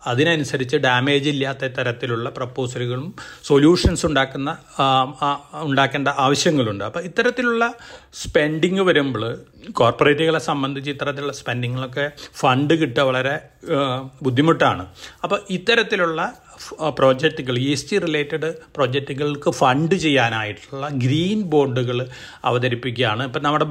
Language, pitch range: Malayalam, 130-160 Hz